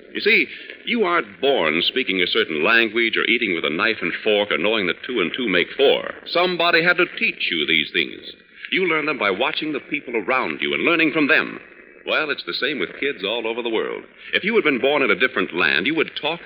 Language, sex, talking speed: English, male, 240 wpm